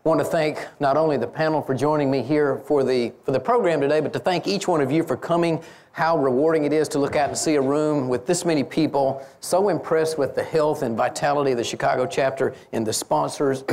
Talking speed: 245 wpm